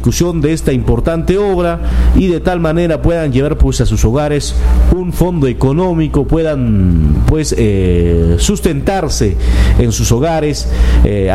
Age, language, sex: 50-69, Spanish, male